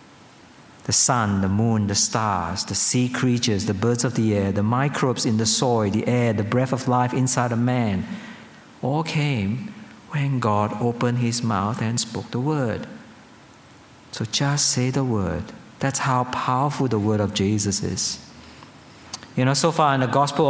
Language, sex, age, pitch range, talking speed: English, male, 50-69, 105-140 Hz, 175 wpm